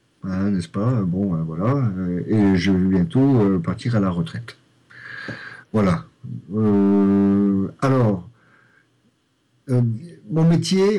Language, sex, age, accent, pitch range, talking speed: French, male, 50-69, French, 100-125 Hz, 115 wpm